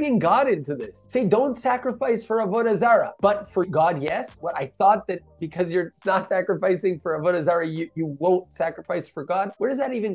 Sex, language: male, English